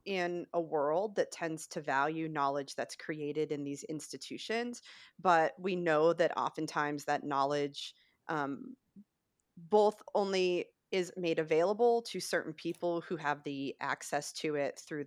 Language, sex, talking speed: English, female, 145 wpm